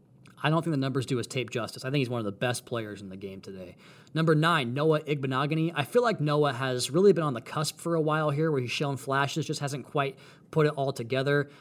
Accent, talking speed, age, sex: American, 260 wpm, 20-39, male